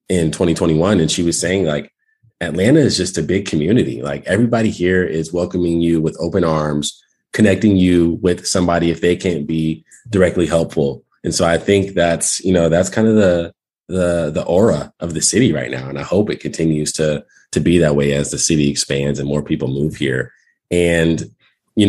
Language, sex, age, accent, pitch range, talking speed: English, male, 20-39, American, 75-90 Hz, 195 wpm